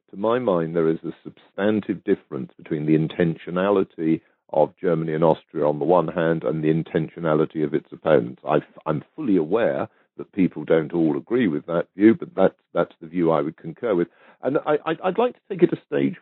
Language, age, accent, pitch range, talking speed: English, 50-69, British, 80-95 Hz, 205 wpm